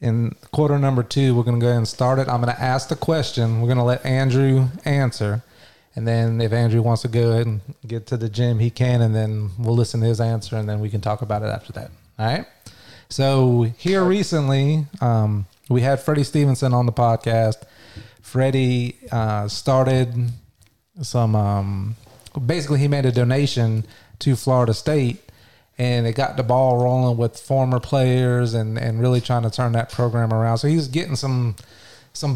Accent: American